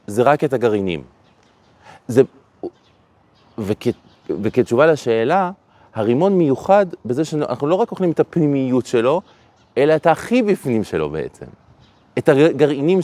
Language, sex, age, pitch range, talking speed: Hebrew, male, 30-49, 110-165 Hz, 120 wpm